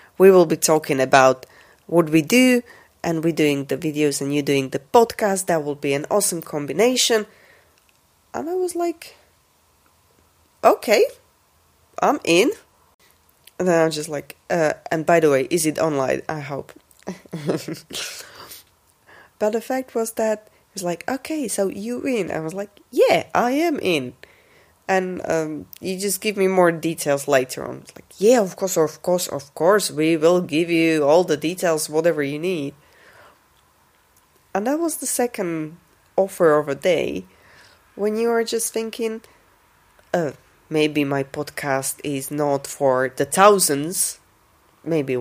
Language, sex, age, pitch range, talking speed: English, female, 20-39, 150-215 Hz, 155 wpm